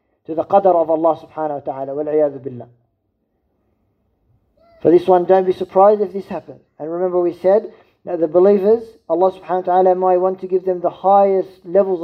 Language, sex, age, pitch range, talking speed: English, male, 50-69, 155-185 Hz, 190 wpm